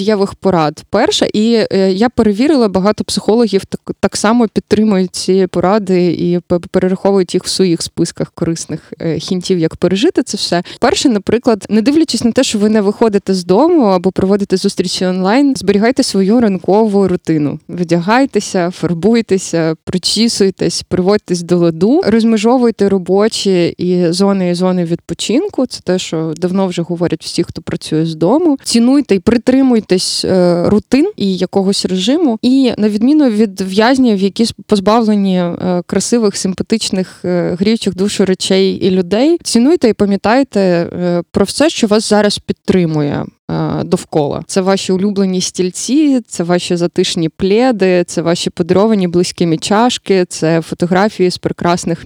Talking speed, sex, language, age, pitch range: 135 wpm, female, Ukrainian, 20-39, 180-220 Hz